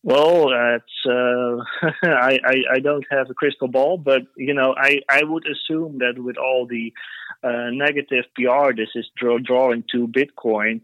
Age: 30-49